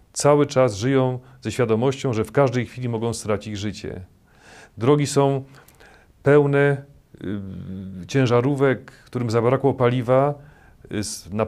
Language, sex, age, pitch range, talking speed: Polish, male, 40-59, 105-135 Hz, 105 wpm